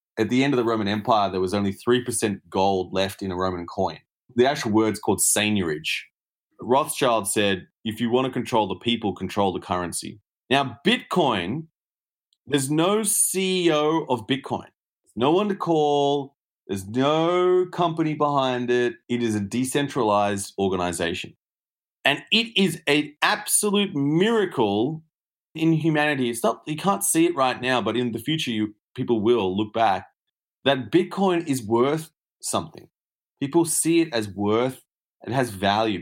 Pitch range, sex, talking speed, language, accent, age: 105-150 Hz, male, 155 wpm, English, Australian, 30-49